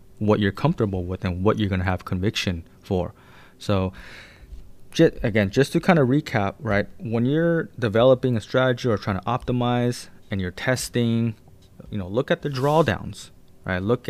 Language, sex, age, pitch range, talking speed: English, male, 20-39, 95-120 Hz, 165 wpm